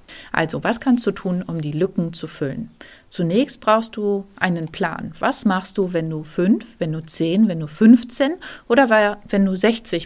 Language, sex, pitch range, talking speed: German, female, 170-215 Hz, 185 wpm